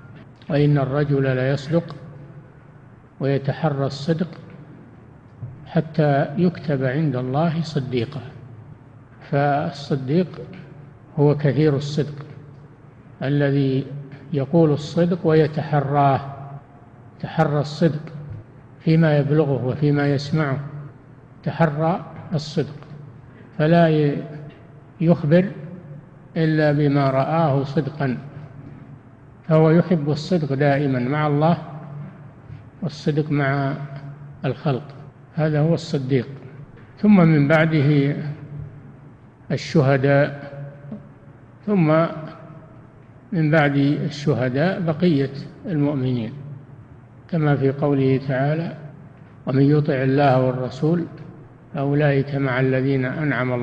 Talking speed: 75 wpm